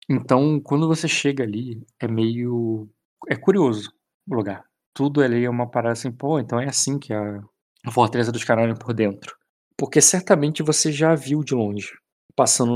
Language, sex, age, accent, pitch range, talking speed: Portuguese, male, 20-39, Brazilian, 110-135 Hz, 180 wpm